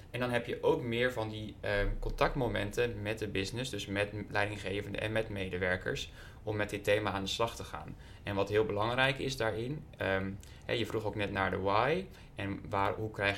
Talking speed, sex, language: 195 wpm, male, Dutch